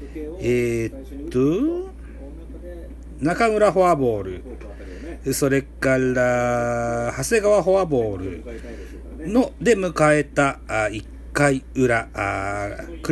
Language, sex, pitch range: Japanese, male, 110-170 Hz